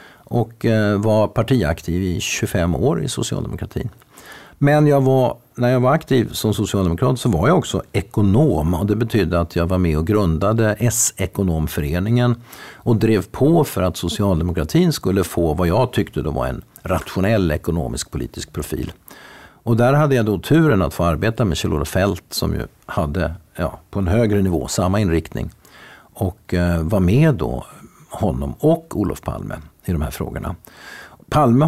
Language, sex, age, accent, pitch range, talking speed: Swedish, male, 50-69, native, 90-125 Hz, 160 wpm